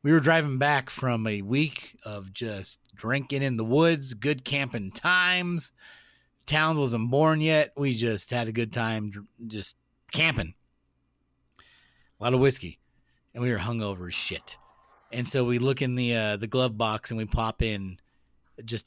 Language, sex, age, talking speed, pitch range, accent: English, male, 30-49, 170 wpm, 110-140 Hz, American